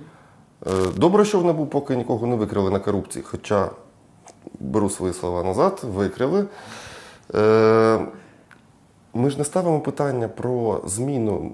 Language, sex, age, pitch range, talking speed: Ukrainian, male, 20-39, 100-125 Hz, 120 wpm